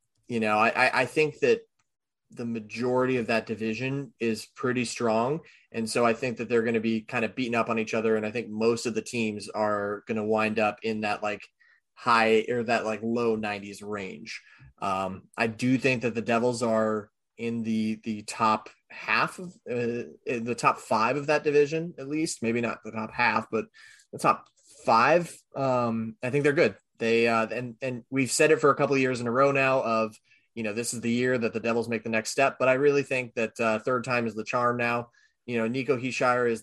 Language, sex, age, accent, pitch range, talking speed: English, male, 20-39, American, 110-125 Hz, 225 wpm